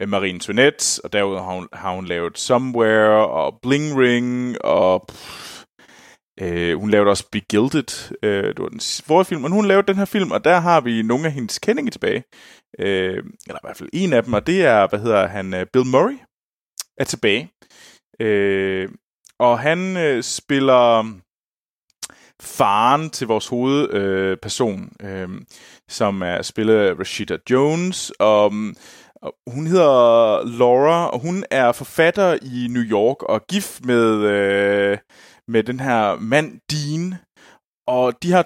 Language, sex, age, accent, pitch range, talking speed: Danish, male, 20-39, native, 105-160 Hz, 155 wpm